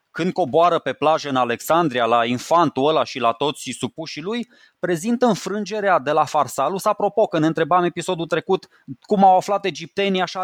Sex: male